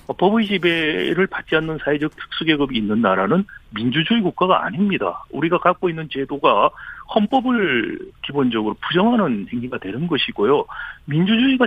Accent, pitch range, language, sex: native, 155-225 Hz, Korean, male